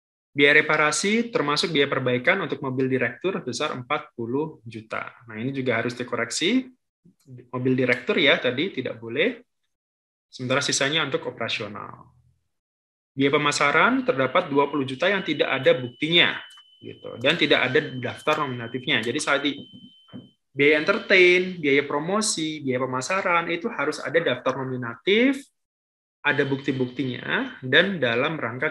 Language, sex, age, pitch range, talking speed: Indonesian, male, 20-39, 125-155 Hz, 125 wpm